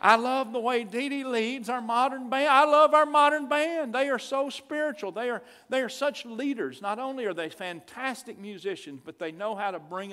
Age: 50-69